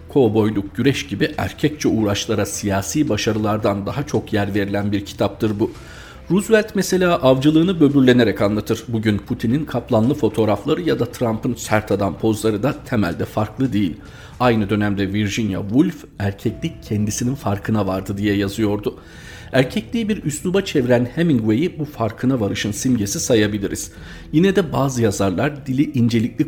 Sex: male